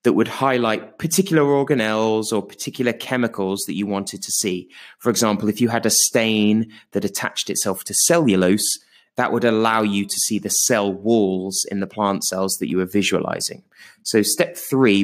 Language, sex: English, male